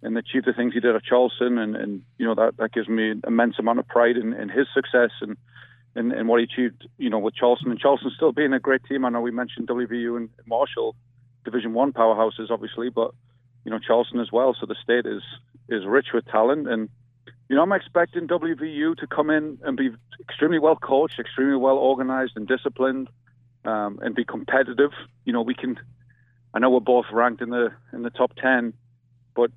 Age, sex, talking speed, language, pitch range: 30-49, male, 215 wpm, English, 120-130 Hz